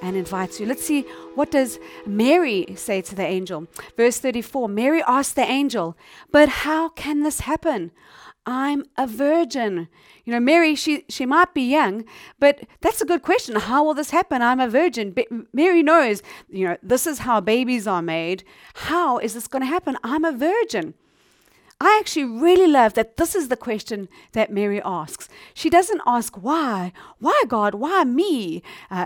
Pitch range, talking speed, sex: 220-310 Hz, 180 wpm, female